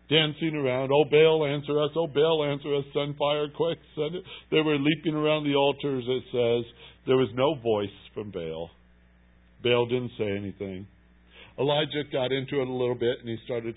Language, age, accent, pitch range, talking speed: English, 60-79, American, 110-175 Hz, 185 wpm